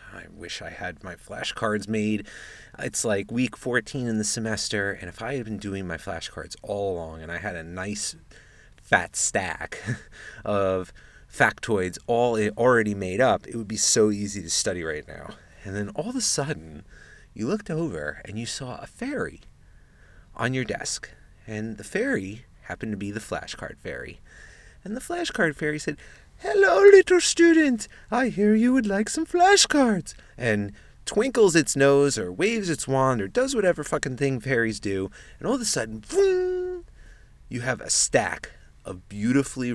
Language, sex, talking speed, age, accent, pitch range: English, male, 170 wpm, 30-49, American, 90-135 Hz